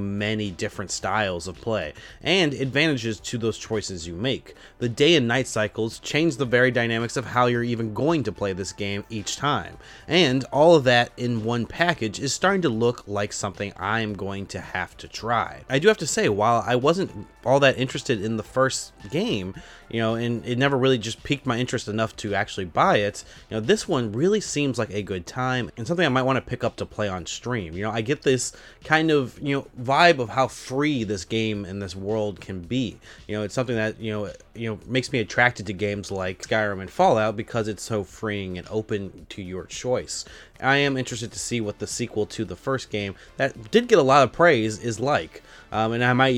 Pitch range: 105-130 Hz